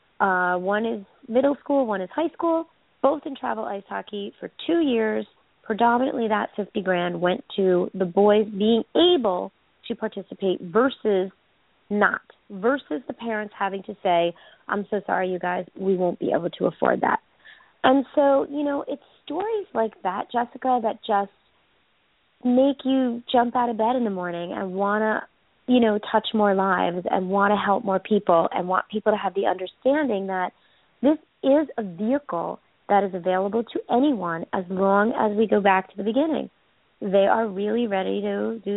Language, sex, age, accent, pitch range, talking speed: English, female, 30-49, American, 190-235 Hz, 180 wpm